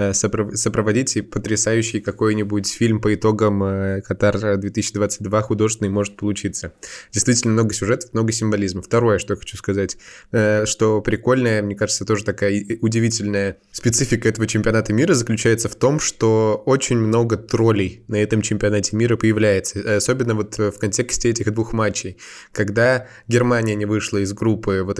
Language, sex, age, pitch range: Russian, male, 20-39, 100-115 Hz